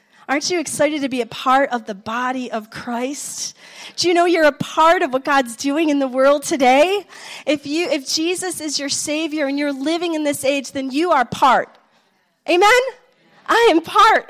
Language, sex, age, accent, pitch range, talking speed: English, female, 30-49, American, 230-330 Hz, 195 wpm